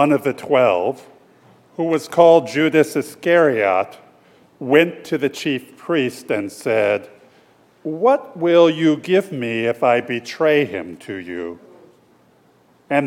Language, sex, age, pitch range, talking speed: English, male, 50-69, 120-160 Hz, 130 wpm